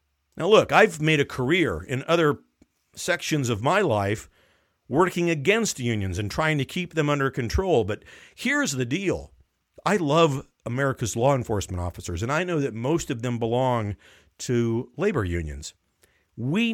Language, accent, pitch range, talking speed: English, American, 110-165 Hz, 160 wpm